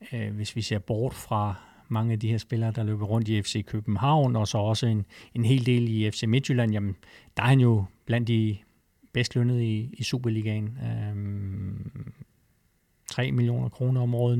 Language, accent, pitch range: Danish, native, 110-130 Hz